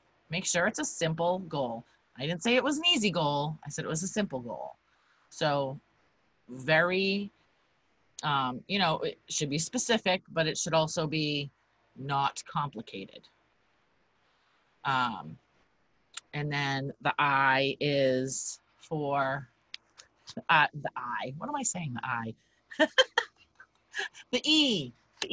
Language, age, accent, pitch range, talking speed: English, 30-49, American, 135-170 Hz, 130 wpm